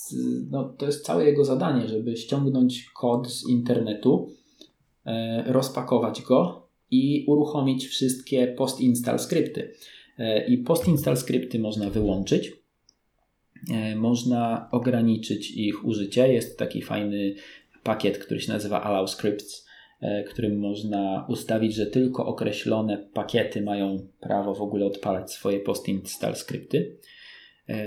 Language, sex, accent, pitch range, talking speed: Polish, male, native, 100-125 Hz, 120 wpm